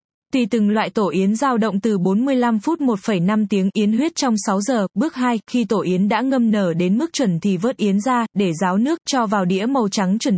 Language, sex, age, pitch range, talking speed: Vietnamese, female, 10-29, 195-245 Hz, 235 wpm